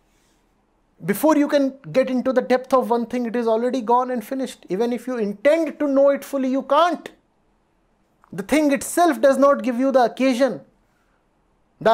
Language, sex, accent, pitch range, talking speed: English, male, Indian, 190-275 Hz, 180 wpm